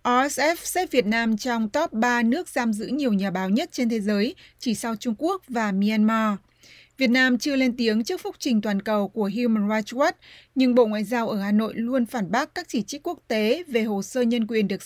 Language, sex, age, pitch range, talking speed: Vietnamese, female, 20-39, 215-255 Hz, 235 wpm